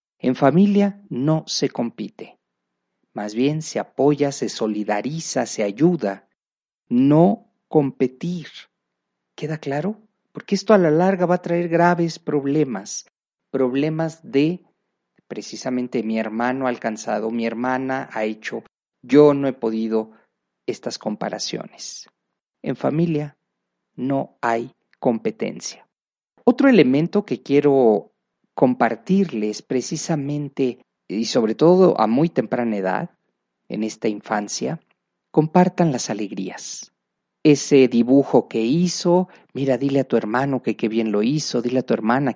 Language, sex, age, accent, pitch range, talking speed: Spanish, male, 40-59, Mexican, 110-155 Hz, 120 wpm